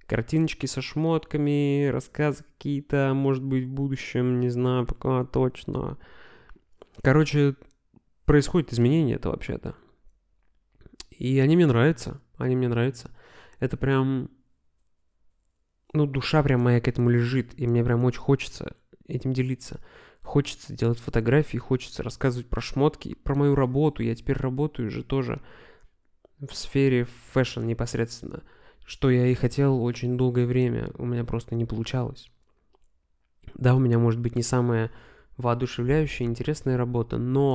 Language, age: Russian, 20-39